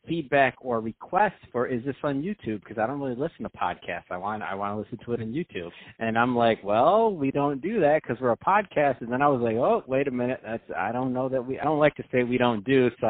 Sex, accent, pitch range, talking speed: male, American, 125-170 Hz, 285 wpm